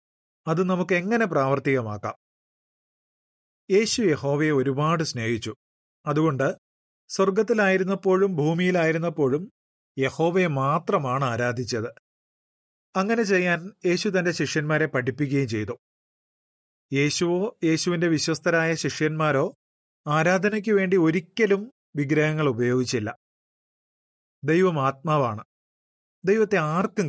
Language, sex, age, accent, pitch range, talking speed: Malayalam, male, 30-49, native, 140-185 Hz, 75 wpm